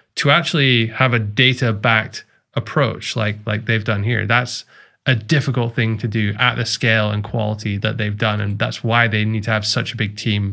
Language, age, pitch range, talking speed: English, 20-39, 110-140 Hz, 210 wpm